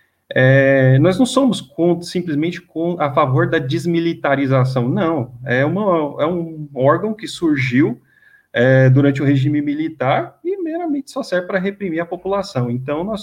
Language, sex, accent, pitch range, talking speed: Portuguese, male, Brazilian, 130-170 Hz, 130 wpm